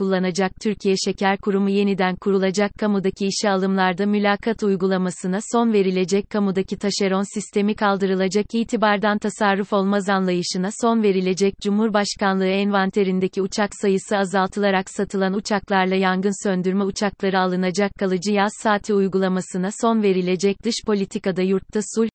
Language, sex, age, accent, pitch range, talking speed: Turkish, female, 30-49, native, 190-210 Hz, 120 wpm